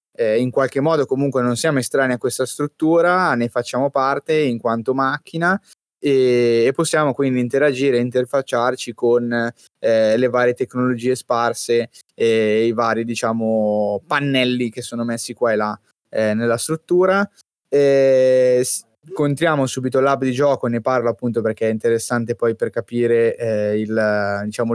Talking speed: 150 wpm